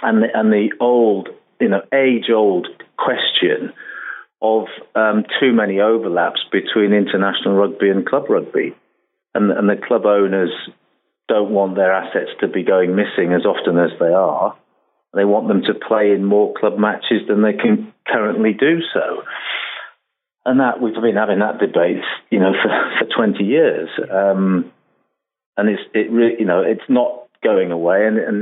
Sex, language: male, English